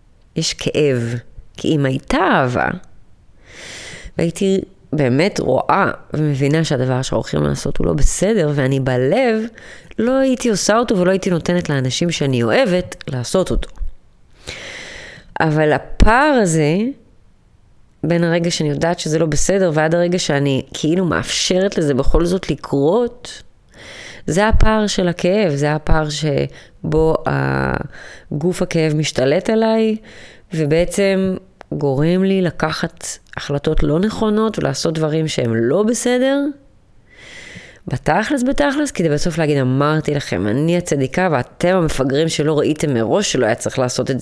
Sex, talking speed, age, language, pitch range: female, 125 wpm, 20-39, Hebrew, 135-185 Hz